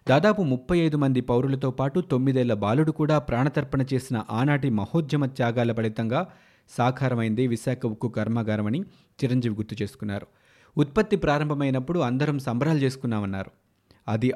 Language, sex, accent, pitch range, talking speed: Telugu, male, native, 115-140 Hz, 115 wpm